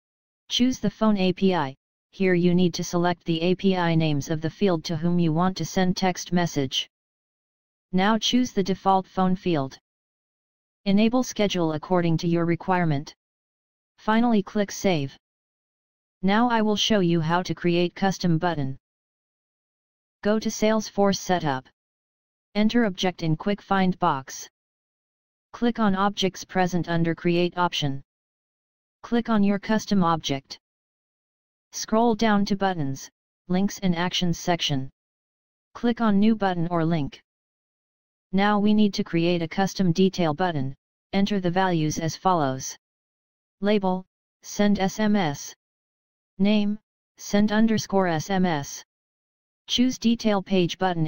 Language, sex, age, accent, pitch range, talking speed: English, female, 30-49, American, 165-205 Hz, 130 wpm